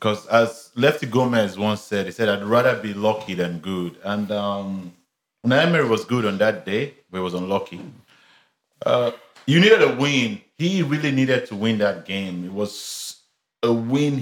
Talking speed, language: 175 wpm, English